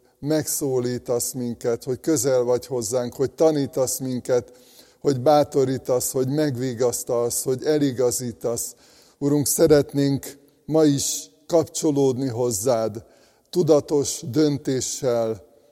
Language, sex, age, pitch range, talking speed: Hungarian, male, 50-69, 125-145 Hz, 90 wpm